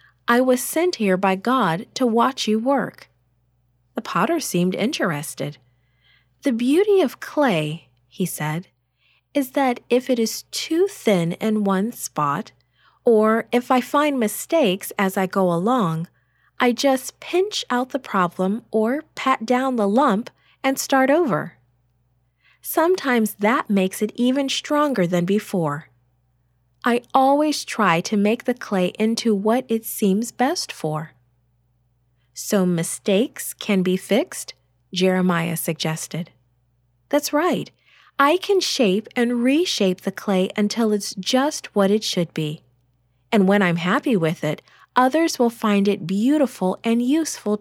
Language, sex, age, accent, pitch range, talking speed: English, female, 40-59, American, 155-255 Hz, 140 wpm